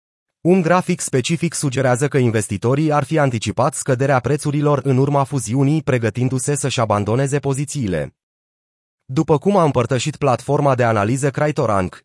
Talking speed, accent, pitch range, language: 130 wpm, native, 120-150 Hz, Romanian